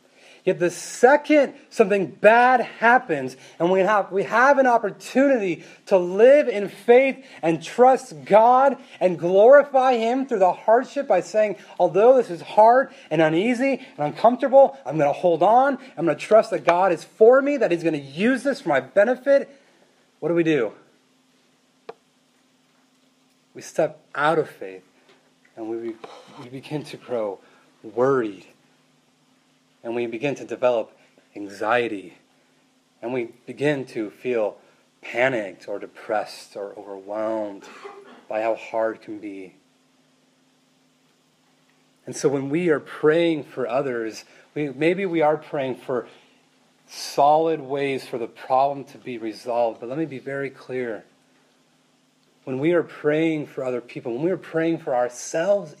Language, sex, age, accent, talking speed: English, male, 30-49, American, 150 wpm